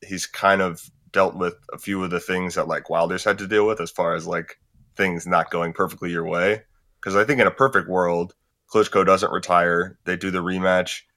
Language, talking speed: English, 220 wpm